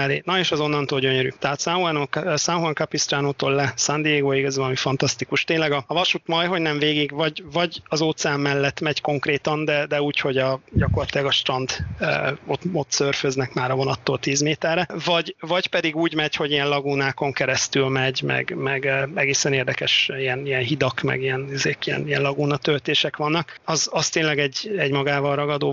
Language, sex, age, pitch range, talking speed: Hungarian, male, 30-49, 140-155 Hz, 185 wpm